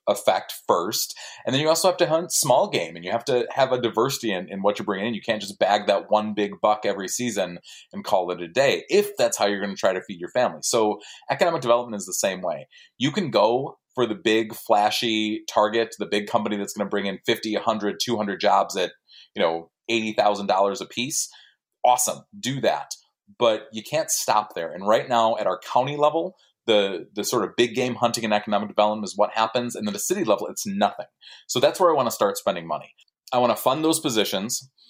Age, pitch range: 30-49, 105-125 Hz